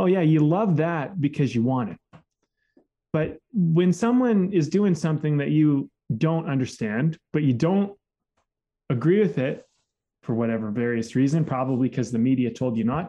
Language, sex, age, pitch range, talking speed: English, male, 20-39, 130-165 Hz, 165 wpm